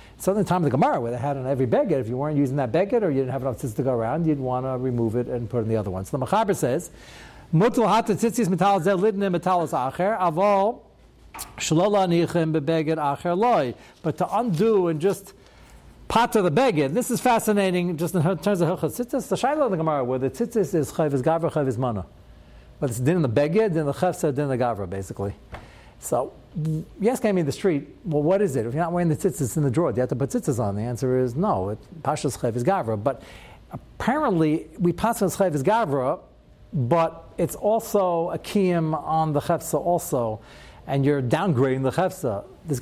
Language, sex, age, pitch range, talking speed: English, male, 60-79, 135-190 Hz, 200 wpm